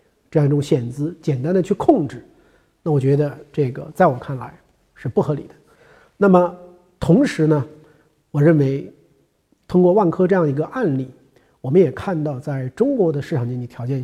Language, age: Chinese, 50-69